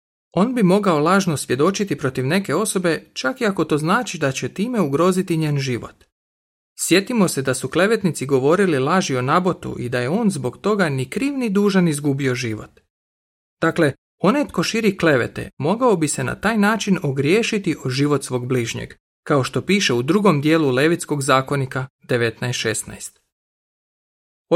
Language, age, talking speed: Croatian, 40-59, 160 wpm